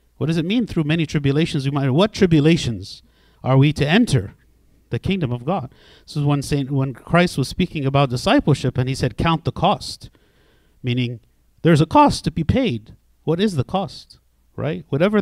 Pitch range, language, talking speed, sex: 130-170 Hz, English, 175 wpm, male